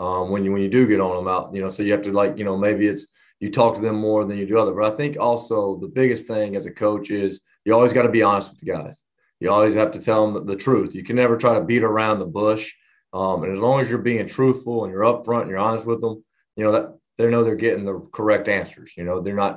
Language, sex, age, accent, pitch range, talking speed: English, male, 30-49, American, 100-115 Hz, 295 wpm